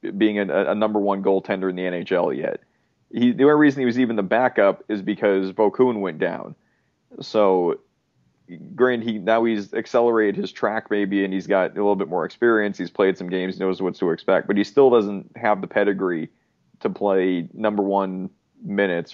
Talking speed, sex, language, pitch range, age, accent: 190 wpm, male, English, 95-115 Hz, 30-49, American